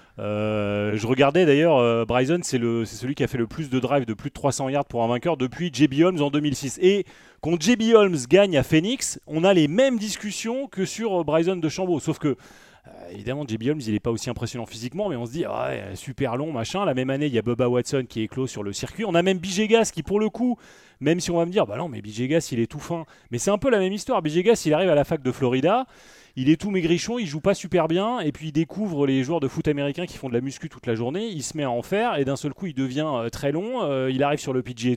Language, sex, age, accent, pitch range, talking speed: French, male, 30-49, French, 120-175 Hz, 285 wpm